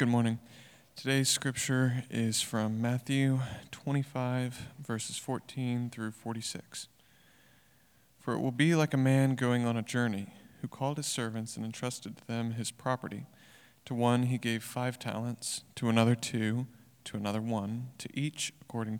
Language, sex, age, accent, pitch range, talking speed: English, male, 40-59, American, 115-135 Hz, 150 wpm